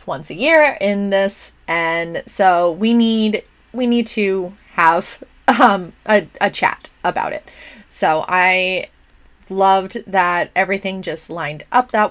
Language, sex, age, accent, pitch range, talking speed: English, female, 20-39, American, 180-235 Hz, 140 wpm